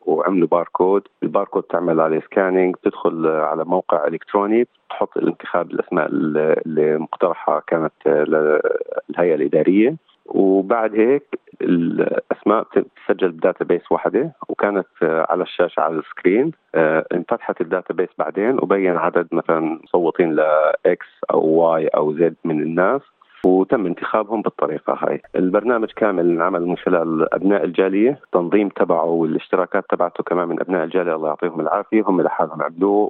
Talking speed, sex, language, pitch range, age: 130 wpm, male, Arabic, 80-105 Hz, 40-59